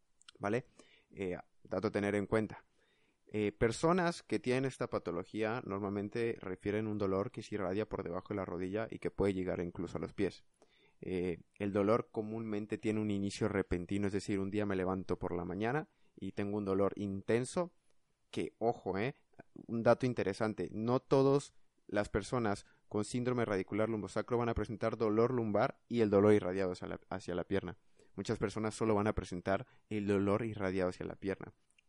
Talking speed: 175 wpm